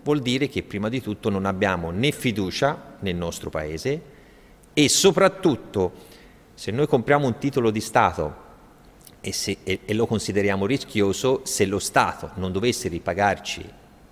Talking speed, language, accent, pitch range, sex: 145 wpm, Italian, native, 100-135 Hz, male